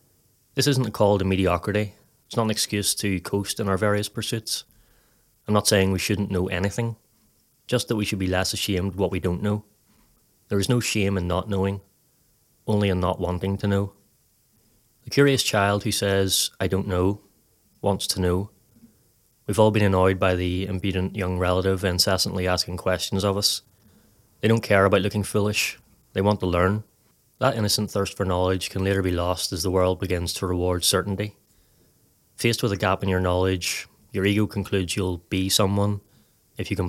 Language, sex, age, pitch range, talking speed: English, male, 30-49, 95-105 Hz, 185 wpm